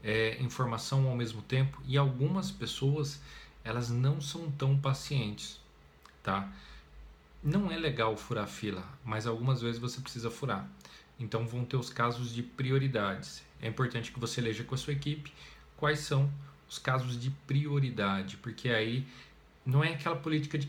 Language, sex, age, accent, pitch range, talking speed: Portuguese, male, 40-59, Brazilian, 115-145 Hz, 160 wpm